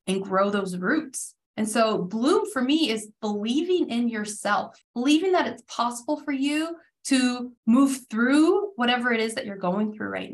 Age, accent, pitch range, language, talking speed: 20-39, American, 220-280 Hz, English, 175 wpm